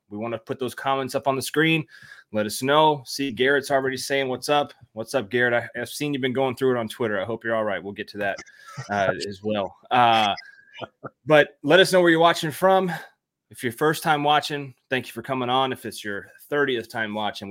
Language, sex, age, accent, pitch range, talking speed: English, male, 20-39, American, 115-145 Hz, 235 wpm